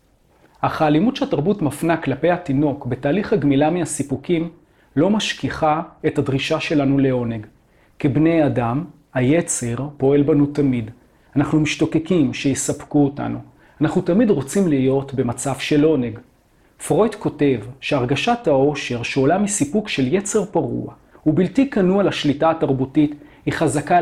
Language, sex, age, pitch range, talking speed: Hebrew, male, 40-59, 135-160 Hz, 115 wpm